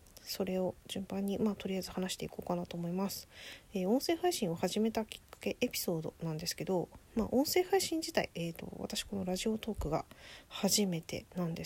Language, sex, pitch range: Japanese, female, 180-245 Hz